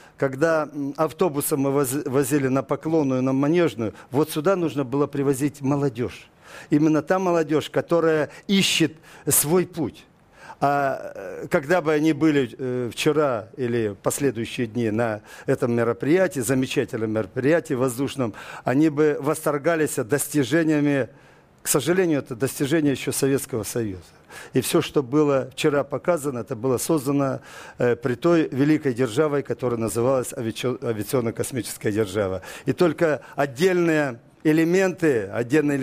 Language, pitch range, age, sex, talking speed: Russian, 130-160 Hz, 50-69, male, 120 wpm